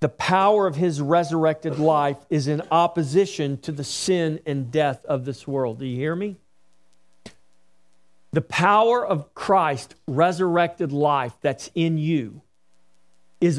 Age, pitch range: 50-69, 110-175 Hz